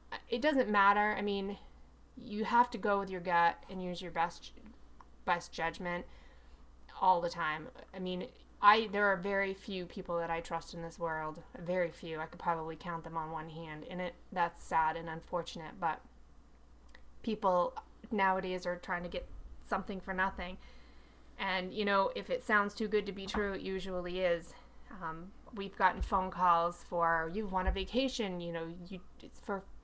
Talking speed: 180 wpm